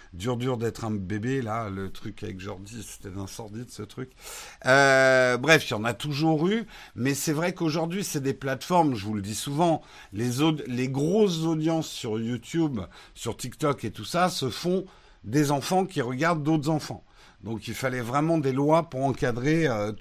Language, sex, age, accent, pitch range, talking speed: French, male, 50-69, French, 110-160 Hz, 190 wpm